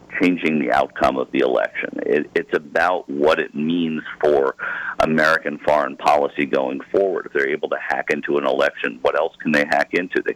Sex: male